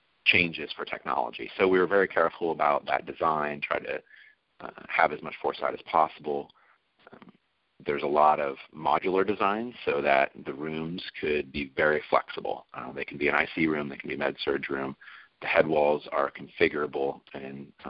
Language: English